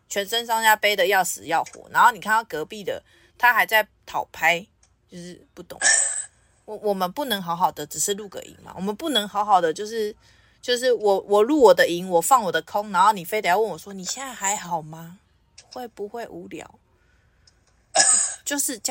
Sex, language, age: female, Chinese, 20-39